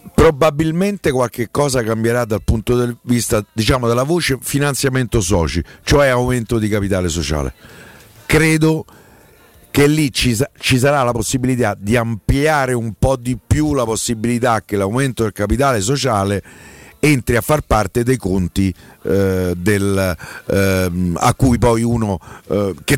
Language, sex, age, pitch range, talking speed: Italian, male, 50-69, 100-125 Hz, 140 wpm